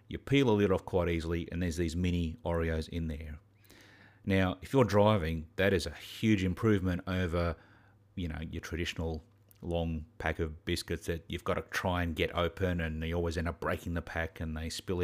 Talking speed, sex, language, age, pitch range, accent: 205 wpm, male, English, 40-59, 85-105 Hz, Australian